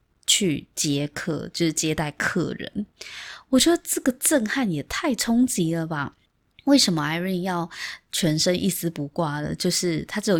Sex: female